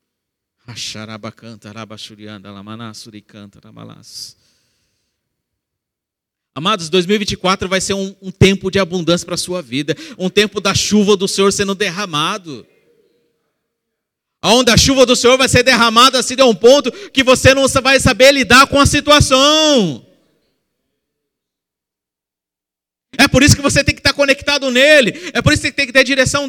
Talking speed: 140 wpm